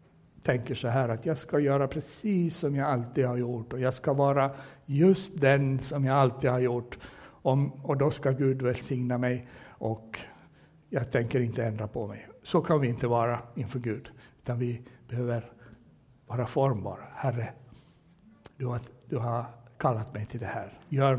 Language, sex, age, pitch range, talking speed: Swedish, male, 60-79, 120-145 Hz, 165 wpm